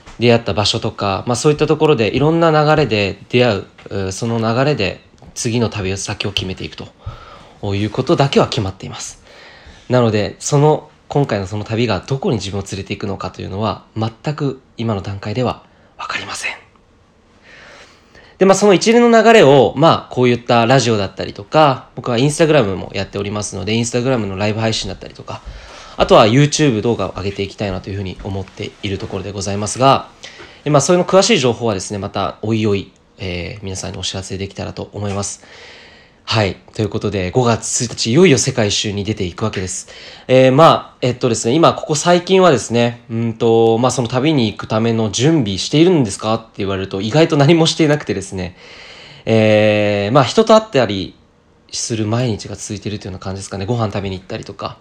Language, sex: Japanese, male